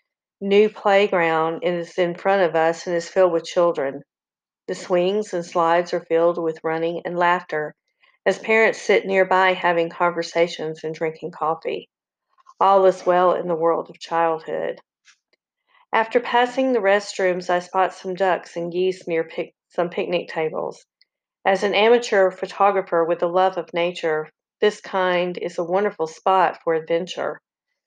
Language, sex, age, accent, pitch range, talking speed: English, female, 40-59, American, 170-195 Hz, 150 wpm